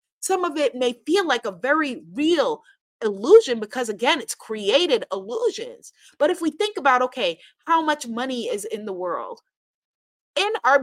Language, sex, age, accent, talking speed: English, female, 30-49, American, 165 wpm